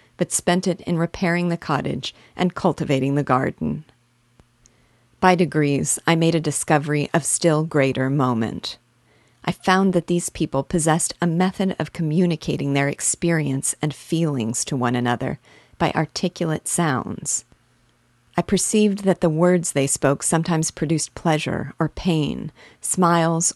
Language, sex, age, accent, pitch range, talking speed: English, female, 40-59, American, 135-170 Hz, 140 wpm